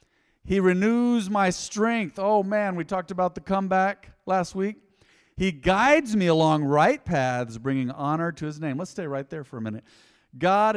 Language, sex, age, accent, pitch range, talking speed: English, male, 40-59, American, 135-185 Hz, 180 wpm